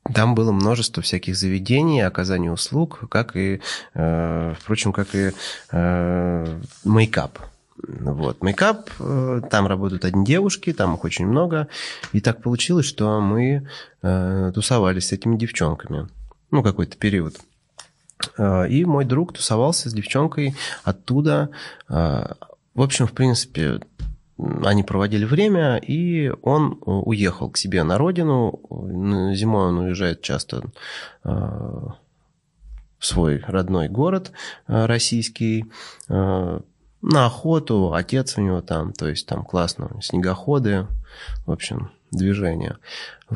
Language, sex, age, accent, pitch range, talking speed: Russian, male, 20-39, native, 95-130 Hz, 110 wpm